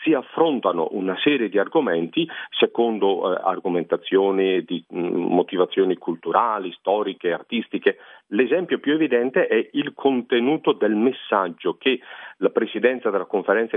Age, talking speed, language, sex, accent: 40-59, 120 wpm, Italian, male, native